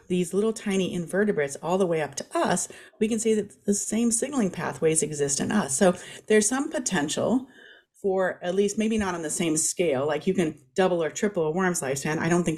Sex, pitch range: female, 165-215 Hz